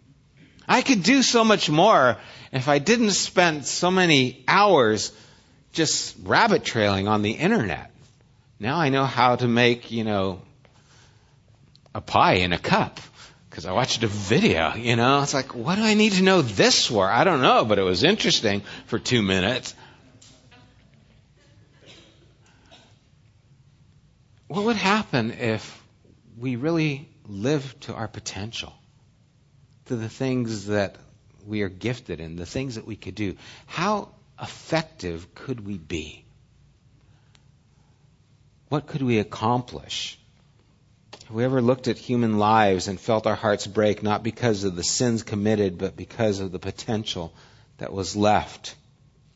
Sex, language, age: male, English, 60-79